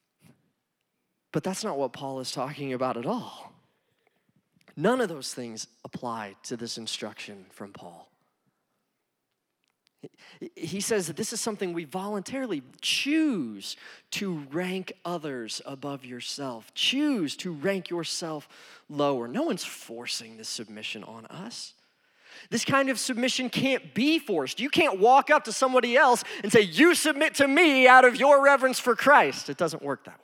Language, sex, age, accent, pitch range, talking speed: English, male, 20-39, American, 155-245 Hz, 150 wpm